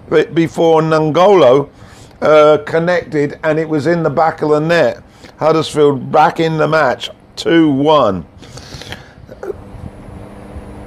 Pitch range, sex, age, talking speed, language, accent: 130-165 Hz, male, 50-69, 105 wpm, English, British